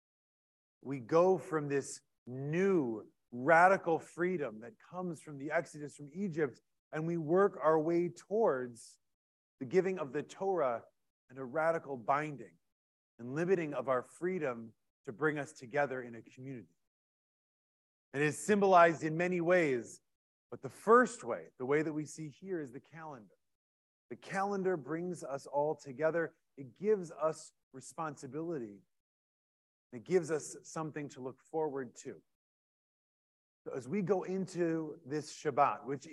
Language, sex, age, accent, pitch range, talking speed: English, male, 30-49, American, 130-175 Hz, 140 wpm